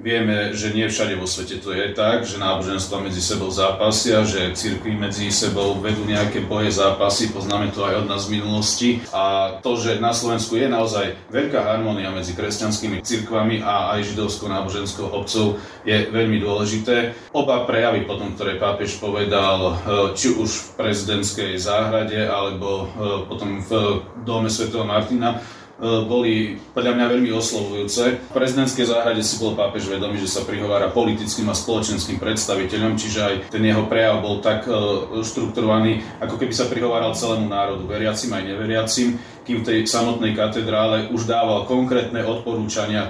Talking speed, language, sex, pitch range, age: 155 wpm, Slovak, male, 100-115 Hz, 30-49